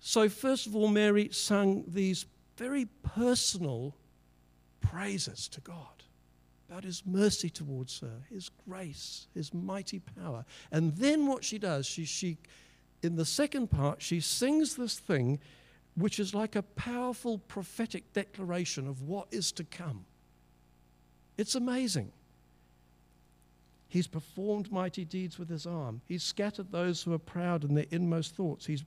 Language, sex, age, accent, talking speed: English, male, 60-79, British, 145 wpm